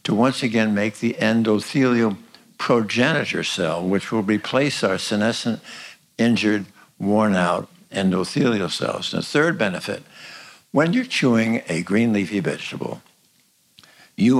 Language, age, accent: English, 60-79, American